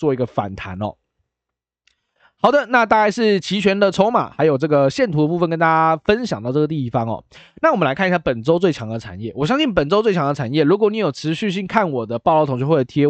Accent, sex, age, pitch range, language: native, male, 20-39, 130-195 Hz, Chinese